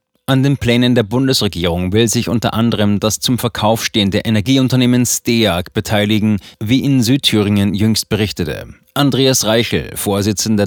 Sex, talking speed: male, 135 wpm